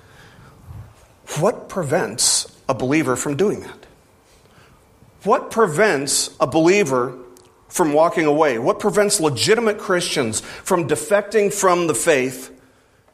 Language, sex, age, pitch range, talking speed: English, male, 40-59, 125-155 Hz, 105 wpm